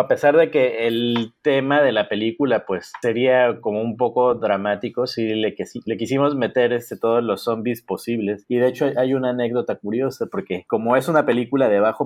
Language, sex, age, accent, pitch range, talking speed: Spanish, male, 30-49, Mexican, 105-125 Hz, 200 wpm